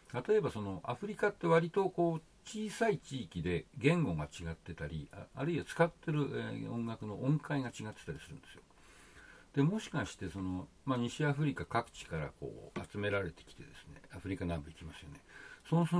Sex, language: male, Japanese